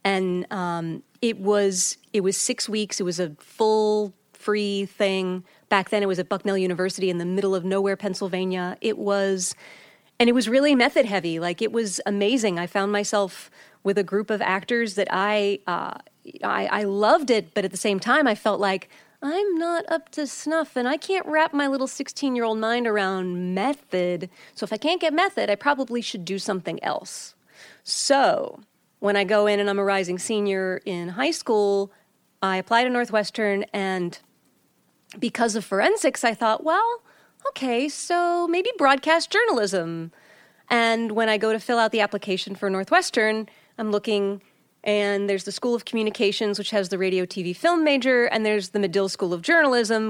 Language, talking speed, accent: English, 180 wpm, American